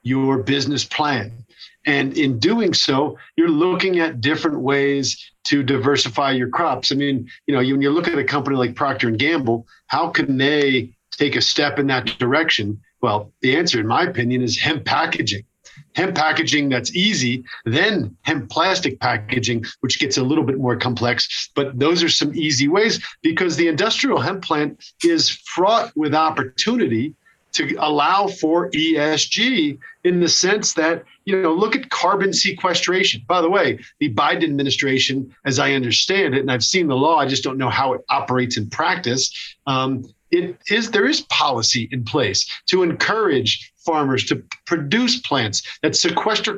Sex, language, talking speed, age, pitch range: male, English, 170 wpm, 50-69, 130-170 Hz